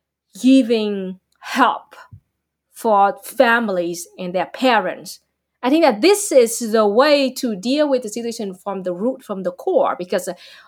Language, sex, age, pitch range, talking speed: English, female, 20-39, 200-255 Hz, 145 wpm